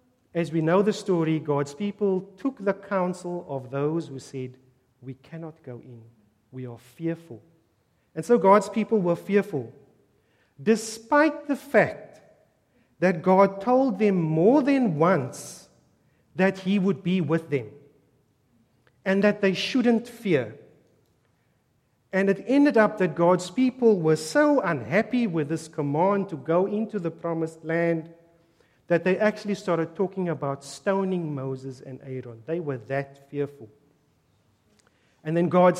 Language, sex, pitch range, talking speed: English, male, 140-195 Hz, 140 wpm